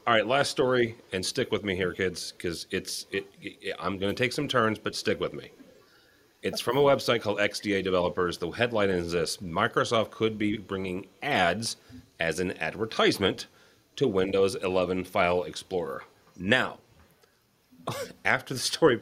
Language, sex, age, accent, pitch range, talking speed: English, male, 30-49, American, 95-120 Hz, 165 wpm